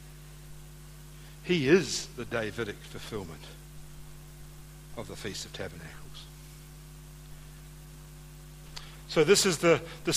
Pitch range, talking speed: 150-165 Hz, 90 wpm